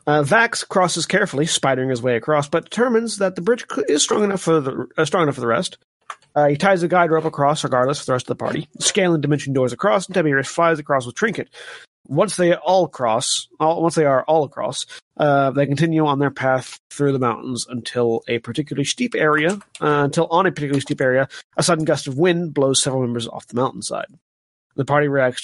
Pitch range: 135-180 Hz